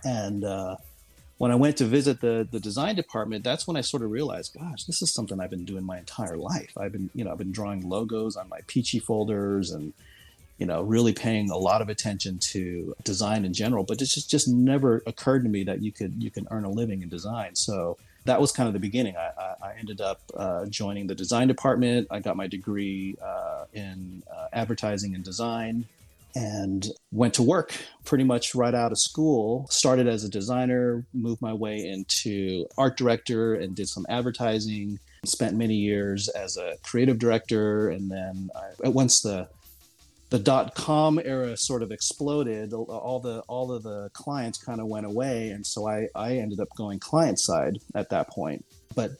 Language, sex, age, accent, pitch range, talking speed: English, male, 30-49, American, 100-125 Hz, 195 wpm